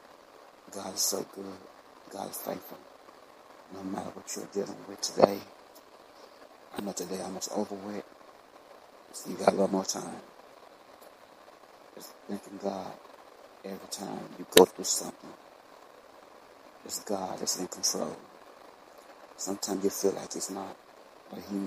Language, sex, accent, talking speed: English, male, American, 140 wpm